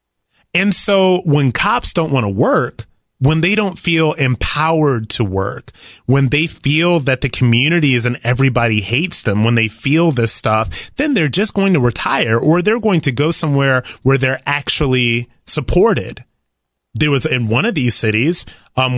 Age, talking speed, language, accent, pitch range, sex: 30-49, 175 wpm, English, American, 120-160 Hz, male